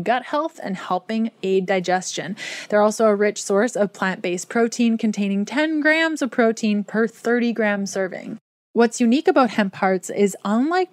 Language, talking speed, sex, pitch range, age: English, 165 wpm, female, 190-230 Hz, 20-39